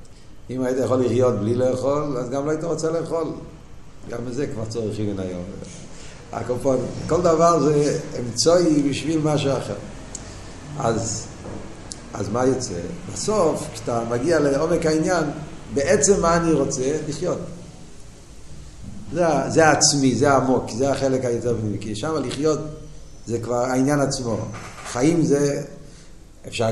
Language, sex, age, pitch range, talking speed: Hebrew, male, 50-69, 110-150 Hz, 130 wpm